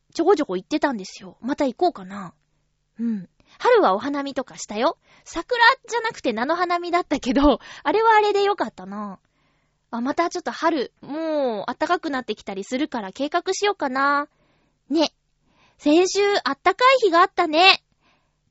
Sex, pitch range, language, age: female, 240-360 Hz, Japanese, 20-39